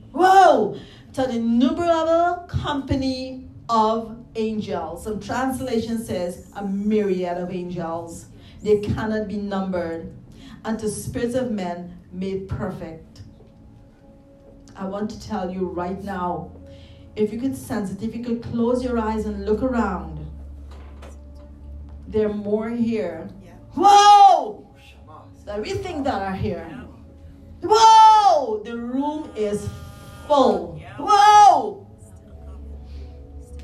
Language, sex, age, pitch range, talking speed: English, female, 40-59, 175-255 Hz, 115 wpm